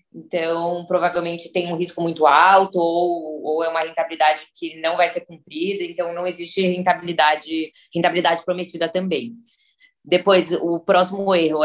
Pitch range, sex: 155-180 Hz, female